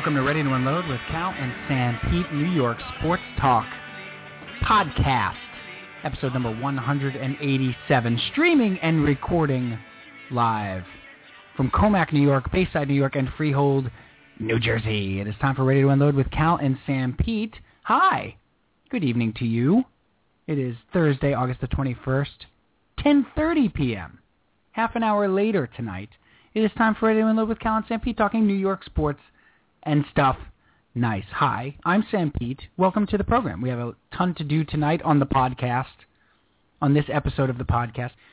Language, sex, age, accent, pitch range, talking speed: English, male, 30-49, American, 120-165 Hz, 165 wpm